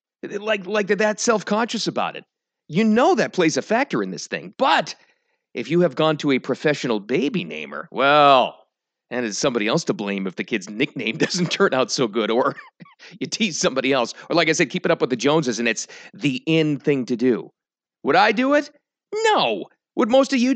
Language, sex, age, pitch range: English, male, 40-59, 140-215 Hz